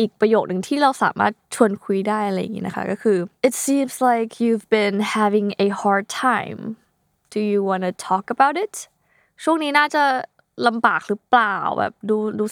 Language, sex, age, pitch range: Thai, female, 20-39, 190-240 Hz